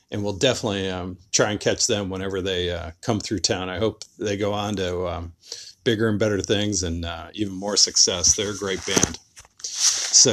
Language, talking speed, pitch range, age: English, 205 wpm, 95-120 Hz, 40-59